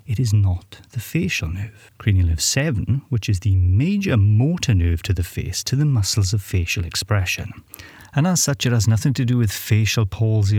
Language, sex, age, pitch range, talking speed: English, male, 30-49, 95-120 Hz, 200 wpm